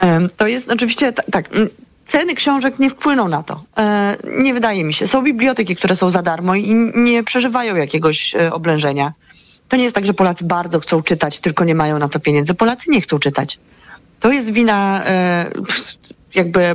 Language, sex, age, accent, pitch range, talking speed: Polish, female, 30-49, native, 155-185 Hz, 170 wpm